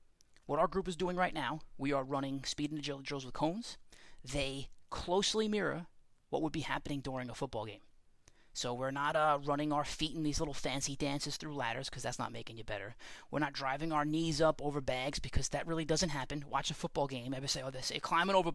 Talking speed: 230 wpm